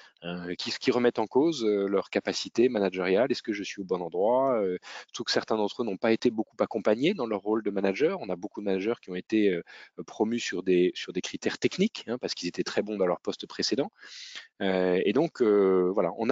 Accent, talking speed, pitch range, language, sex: French, 240 wpm, 95-120 Hz, French, male